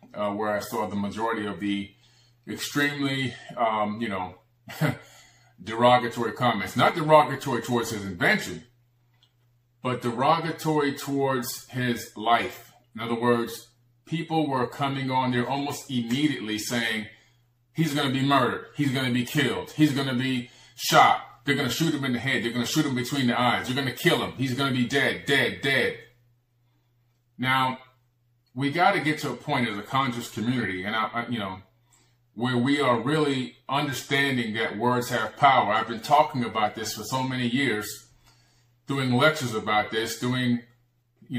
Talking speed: 185 wpm